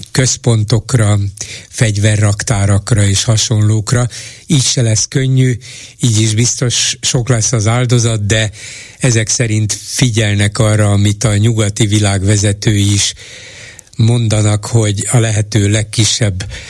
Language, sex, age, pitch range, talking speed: Hungarian, male, 60-79, 105-120 Hz, 110 wpm